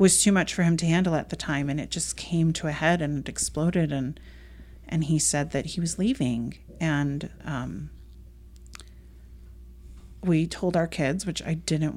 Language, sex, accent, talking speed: English, female, American, 185 wpm